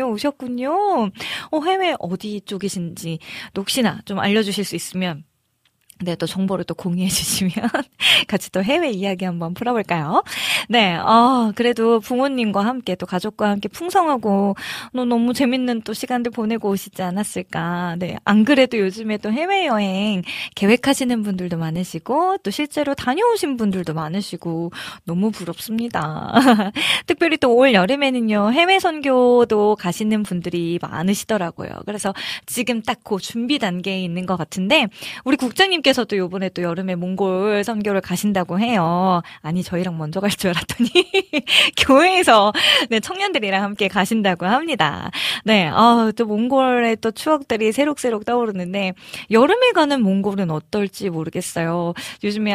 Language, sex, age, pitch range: Korean, female, 20-39, 185-250 Hz